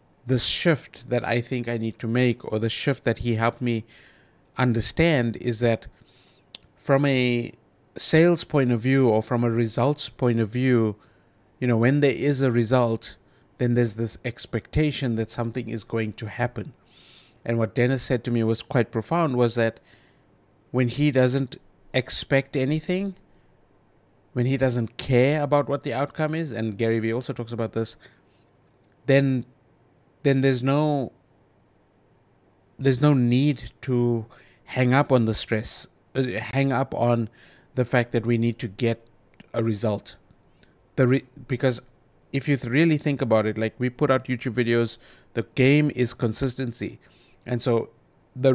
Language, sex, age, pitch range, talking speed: English, male, 50-69, 115-135 Hz, 160 wpm